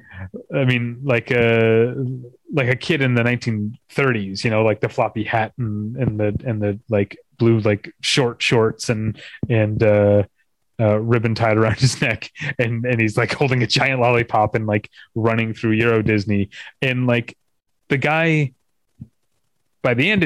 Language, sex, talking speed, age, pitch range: English, male, 165 wpm, 30-49, 110-130 Hz